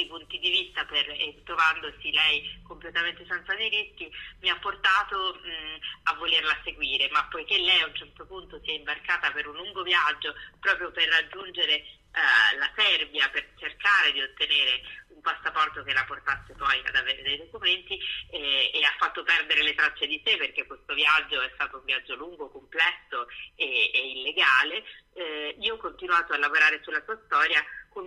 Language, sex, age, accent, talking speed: Italian, female, 30-49, native, 170 wpm